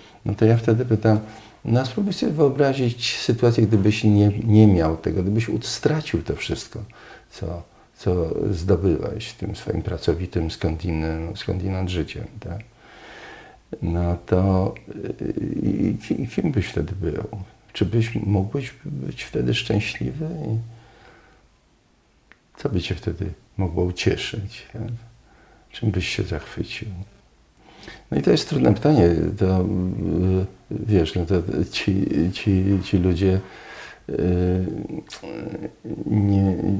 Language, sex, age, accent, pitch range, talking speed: Polish, male, 50-69, native, 90-110 Hz, 120 wpm